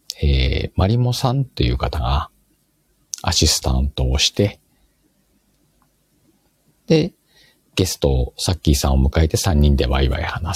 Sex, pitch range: male, 70-95 Hz